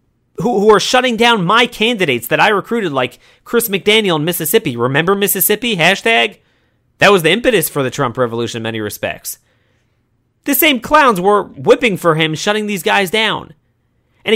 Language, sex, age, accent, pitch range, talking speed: English, male, 30-49, American, 125-200 Hz, 165 wpm